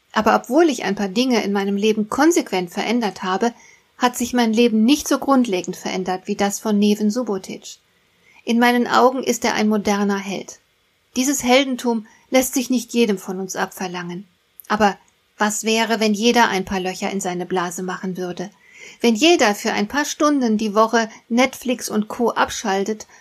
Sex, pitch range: female, 200-245 Hz